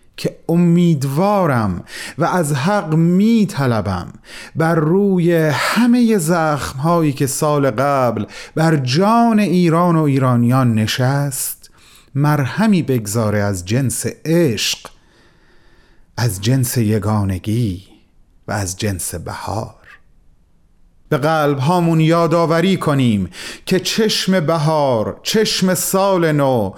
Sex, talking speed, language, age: male, 95 wpm, Persian, 30-49